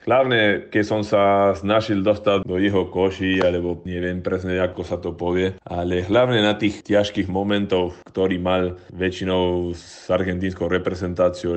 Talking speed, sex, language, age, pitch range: 145 wpm, male, Slovak, 20-39, 90-100 Hz